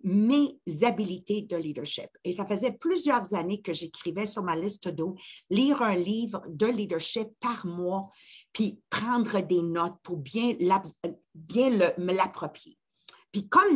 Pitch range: 185-260 Hz